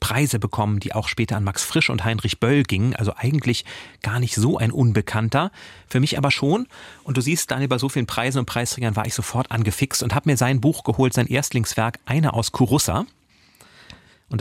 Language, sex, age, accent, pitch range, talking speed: German, male, 30-49, German, 115-145 Hz, 205 wpm